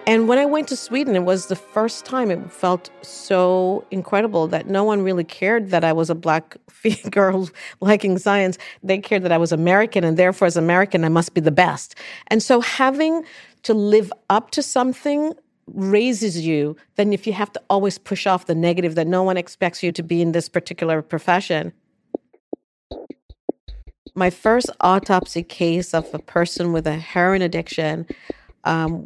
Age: 50-69